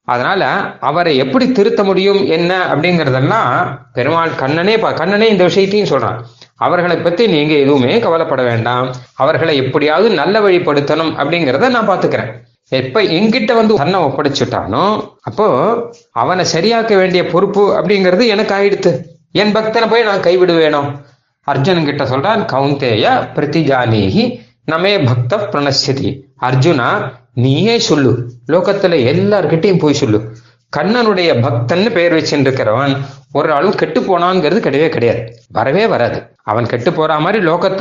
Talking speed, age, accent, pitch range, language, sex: 120 wpm, 30-49, native, 130-190 Hz, Tamil, male